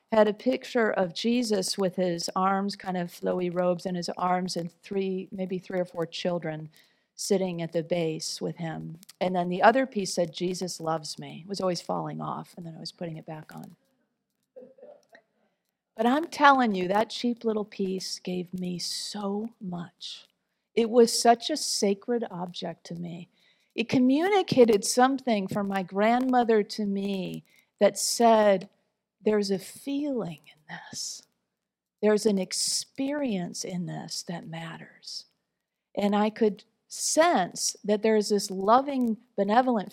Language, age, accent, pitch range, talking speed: English, 40-59, American, 180-230 Hz, 155 wpm